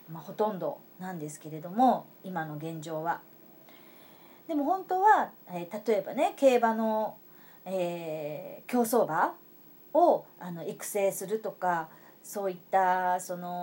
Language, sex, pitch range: Japanese, female, 185-255 Hz